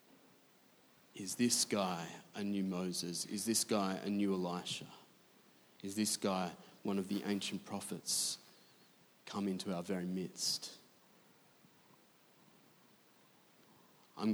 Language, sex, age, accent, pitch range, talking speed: English, male, 20-39, Australian, 100-110 Hz, 110 wpm